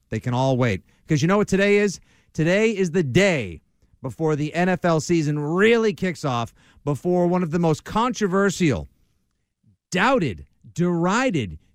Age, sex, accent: 50-69, male, American